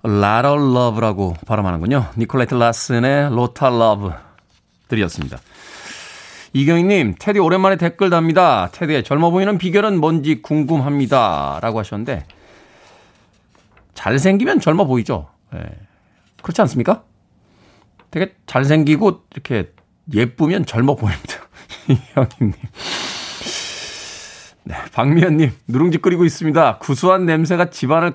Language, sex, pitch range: Korean, male, 115-175 Hz